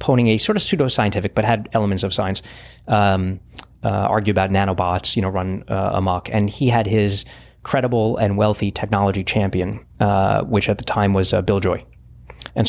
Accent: American